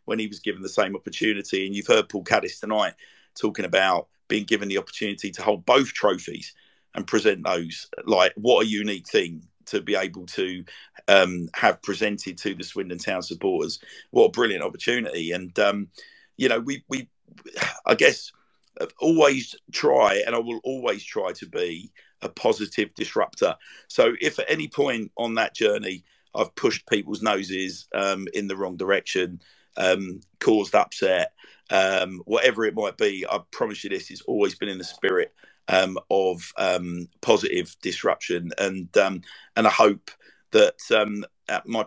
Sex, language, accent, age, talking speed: male, English, British, 50-69, 165 wpm